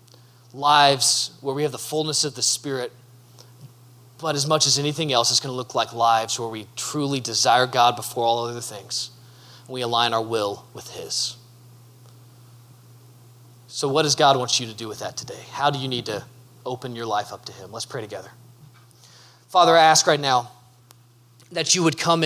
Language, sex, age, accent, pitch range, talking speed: English, male, 20-39, American, 120-185 Hz, 190 wpm